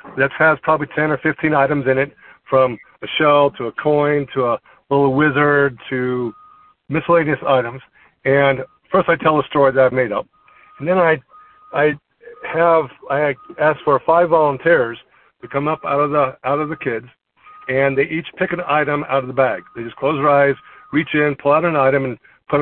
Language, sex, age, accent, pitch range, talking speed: English, male, 50-69, American, 135-160 Hz, 200 wpm